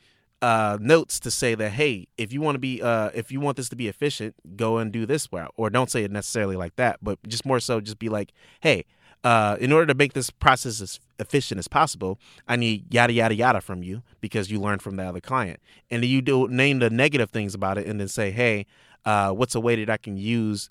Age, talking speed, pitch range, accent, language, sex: 30-49, 245 wpm, 105-130 Hz, American, English, male